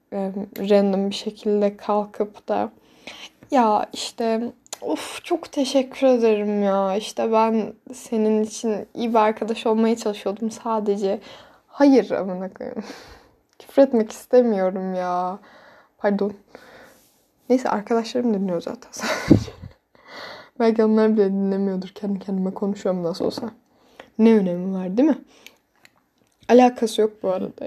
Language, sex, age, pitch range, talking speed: Turkish, female, 10-29, 205-250 Hz, 105 wpm